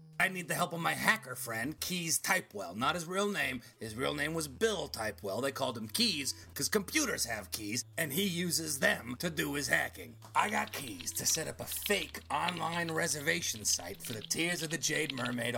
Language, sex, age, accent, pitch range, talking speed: English, male, 30-49, American, 115-170 Hz, 210 wpm